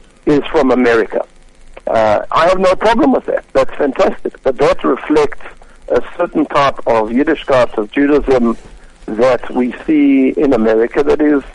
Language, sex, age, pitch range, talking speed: English, male, 60-79, 125-175 Hz, 155 wpm